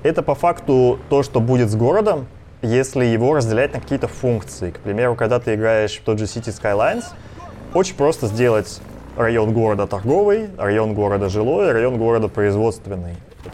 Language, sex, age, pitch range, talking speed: Russian, male, 20-39, 100-120 Hz, 160 wpm